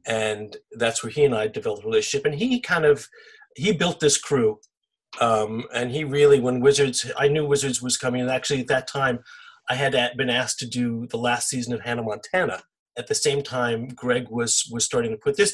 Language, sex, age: English, male, 40-59